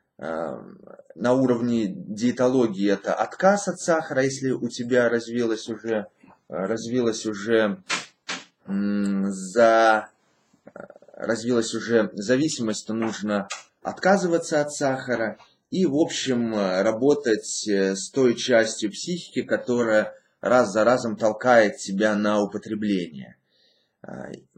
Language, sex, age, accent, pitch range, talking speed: Russian, male, 20-39, native, 115-165 Hz, 90 wpm